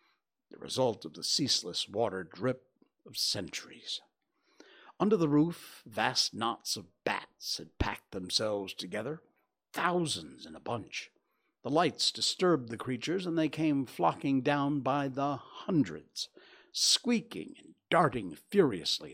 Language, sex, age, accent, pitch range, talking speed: English, male, 60-79, American, 115-145 Hz, 130 wpm